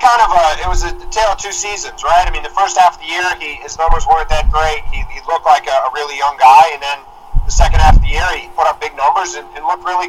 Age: 30-49